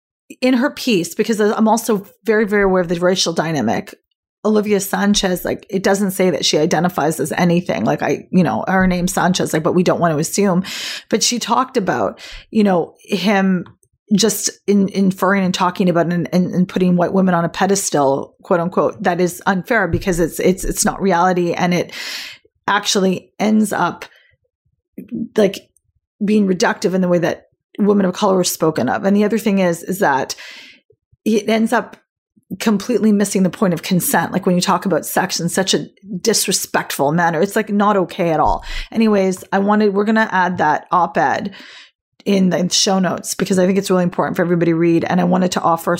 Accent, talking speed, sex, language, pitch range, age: American, 195 wpm, female, English, 175-205 Hz, 30-49